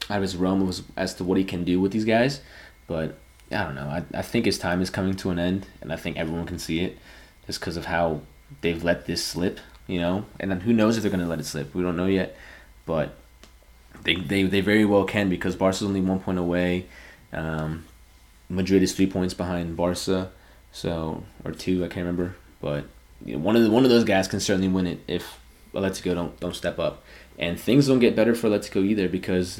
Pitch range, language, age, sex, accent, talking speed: 85-100 Hz, English, 20-39, male, American, 245 wpm